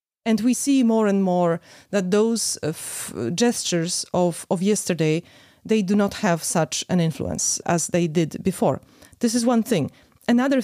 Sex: female